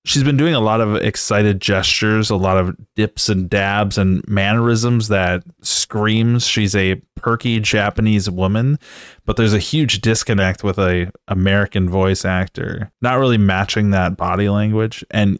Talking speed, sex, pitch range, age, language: 155 wpm, male, 95-115 Hz, 20-39, English